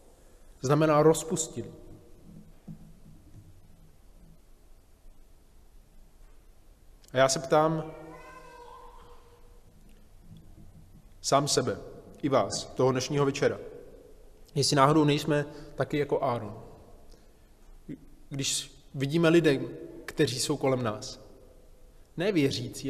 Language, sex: Czech, male